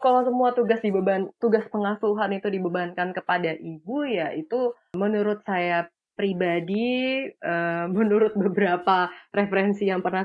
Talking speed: 115 wpm